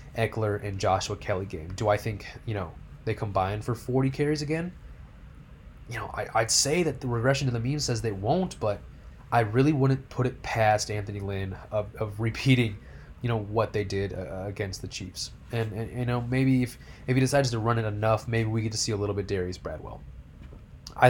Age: 20-39